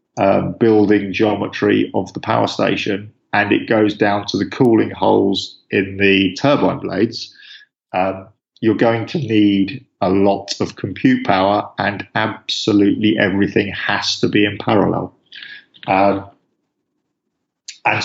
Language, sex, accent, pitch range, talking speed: English, male, British, 100-120 Hz, 130 wpm